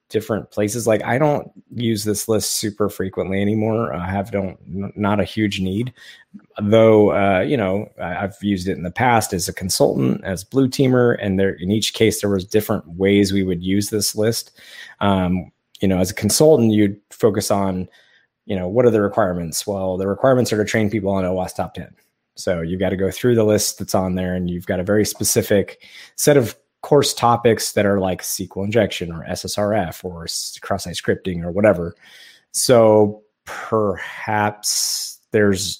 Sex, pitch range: male, 95-110 Hz